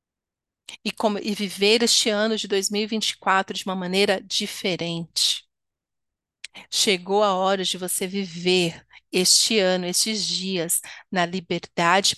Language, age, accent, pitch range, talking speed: Portuguese, 40-59, Brazilian, 180-215 Hz, 115 wpm